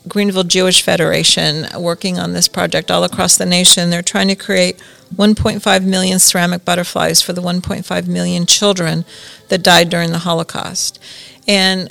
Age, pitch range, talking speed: 40-59, 175-195 Hz, 150 wpm